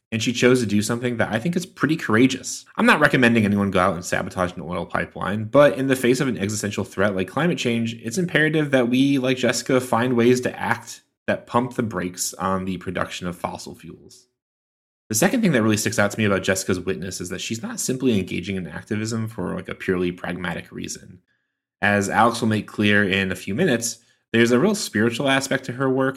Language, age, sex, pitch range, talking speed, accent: English, 20-39, male, 95-125 Hz, 220 wpm, American